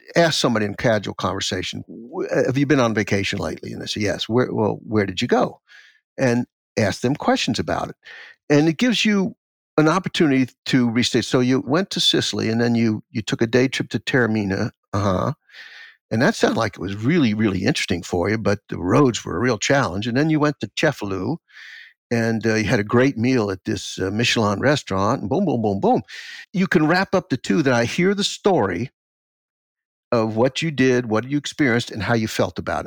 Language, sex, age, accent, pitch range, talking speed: English, male, 60-79, American, 110-150 Hz, 210 wpm